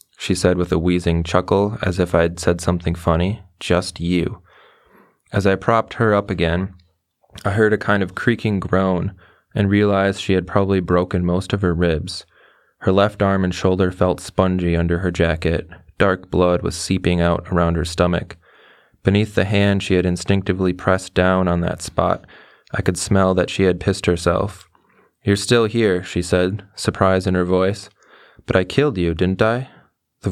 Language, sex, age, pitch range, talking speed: English, male, 20-39, 85-100 Hz, 180 wpm